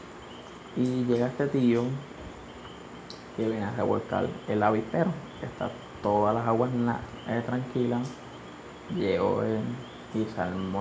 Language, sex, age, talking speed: Spanish, male, 20-39, 115 wpm